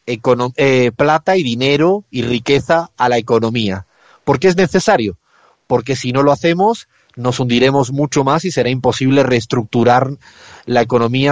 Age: 30-49